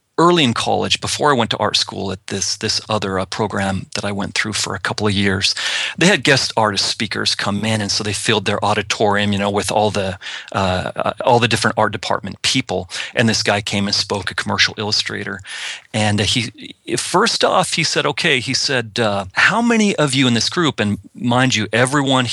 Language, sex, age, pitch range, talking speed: English, male, 40-59, 100-130 Hz, 215 wpm